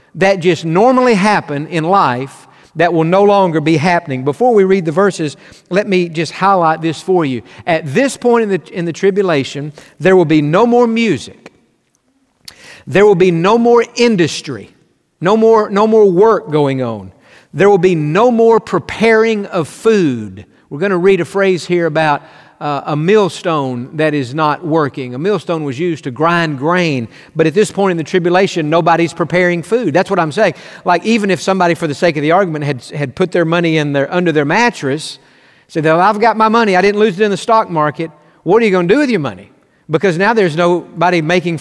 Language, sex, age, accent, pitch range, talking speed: English, male, 50-69, American, 160-200 Hz, 205 wpm